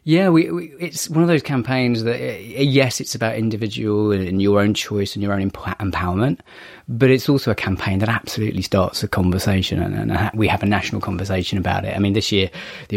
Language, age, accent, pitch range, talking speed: English, 30-49, British, 95-120 Hz, 215 wpm